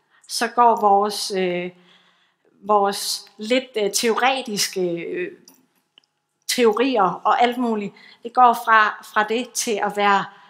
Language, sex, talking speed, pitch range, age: Danish, female, 105 wpm, 195-230 Hz, 30-49